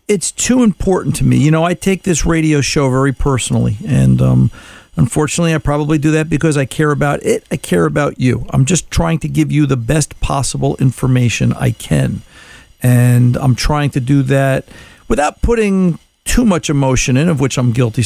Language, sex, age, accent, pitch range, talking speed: English, male, 50-69, American, 125-155 Hz, 195 wpm